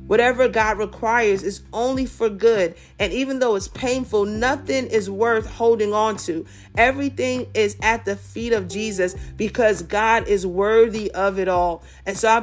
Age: 40-59